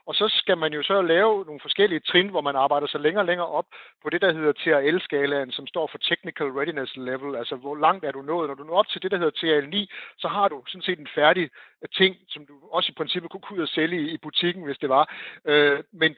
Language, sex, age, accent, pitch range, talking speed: Danish, male, 60-79, native, 145-185 Hz, 250 wpm